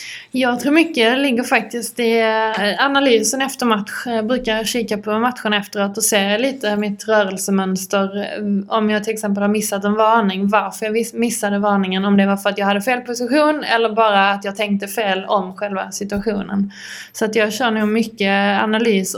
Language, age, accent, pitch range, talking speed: Swedish, 20-39, native, 205-230 Hz, 180 wpm